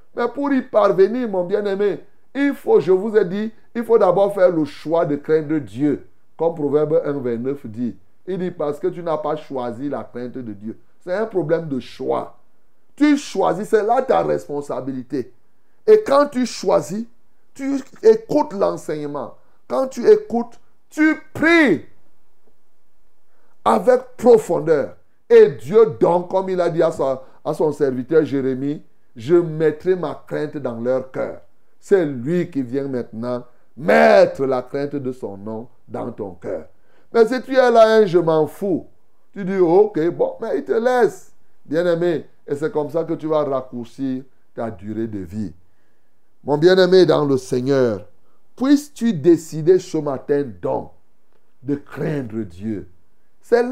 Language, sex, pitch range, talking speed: French, male, 135-225 Hz, 155 wpm